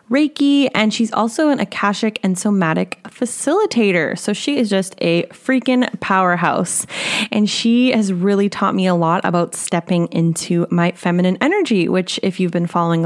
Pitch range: 175-225 Hz